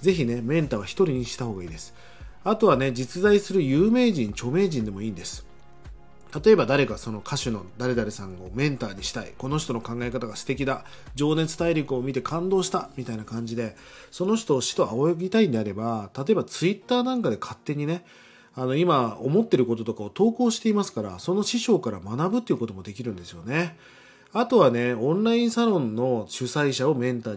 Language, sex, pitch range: Japanese, male, 115-180 Hz